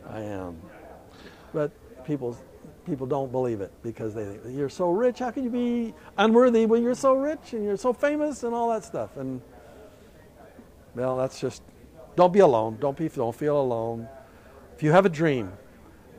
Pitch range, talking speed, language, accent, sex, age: 125-180 Hz, 180 wpm, English, American, male, 60-79